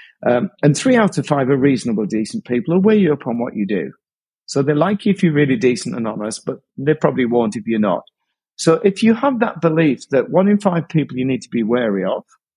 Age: 50-69